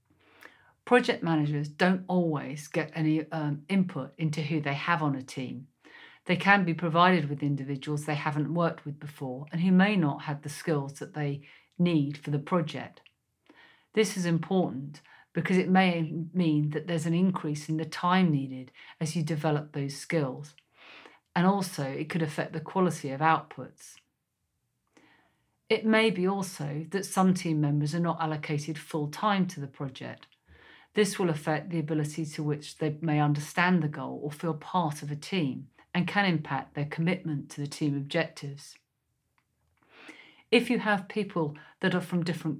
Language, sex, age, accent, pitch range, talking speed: English, female, 50-69, British, 150-180 Hz, 170 wpm